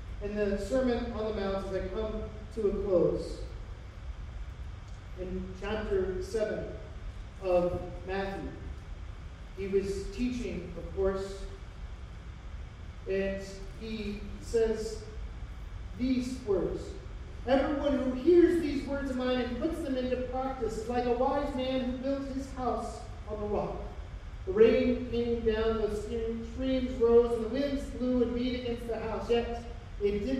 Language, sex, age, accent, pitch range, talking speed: English, male, 40-59, American, 170-245 Hz, 140 wpm